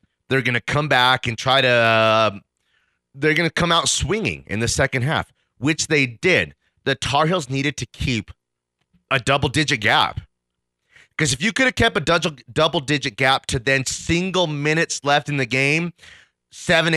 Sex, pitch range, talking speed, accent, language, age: male, 110-155 Hz, 175 wpm, American, English, 30-49